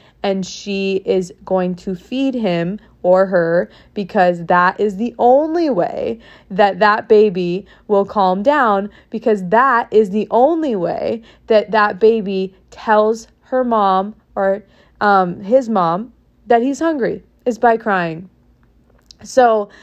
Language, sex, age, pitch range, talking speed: English, female, 20-39, 195-240 Hz, 135 wpm